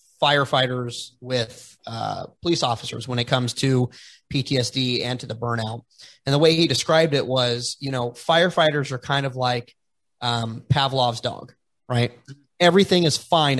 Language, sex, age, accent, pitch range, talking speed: English, male, 30-49, American, 120-150 Hz, 155 wpm